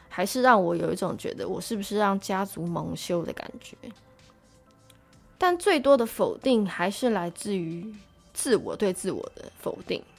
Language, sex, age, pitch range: Chinese, female, 20-39, 185-250 Hz